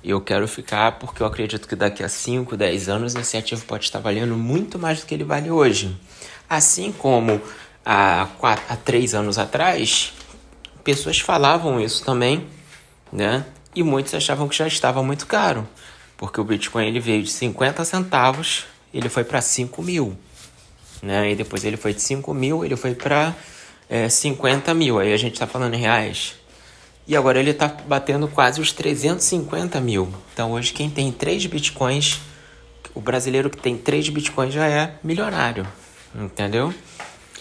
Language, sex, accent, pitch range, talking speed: Portuguese, male, Brazilian, 110-155 Hz, 165 wpm